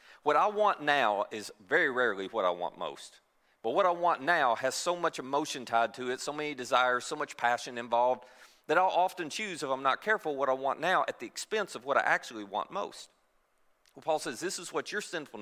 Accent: American